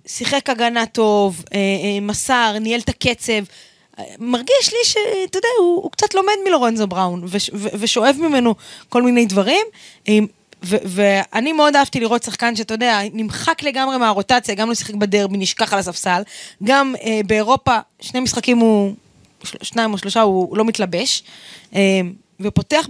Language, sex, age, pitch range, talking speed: Hebrew, female, 20-39, 185-240 Hz, 135 wpm